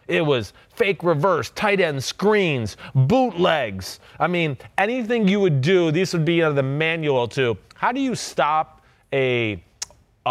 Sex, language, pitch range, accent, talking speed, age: male, English, 150-195 Hz, American, 145 wpm, 30-49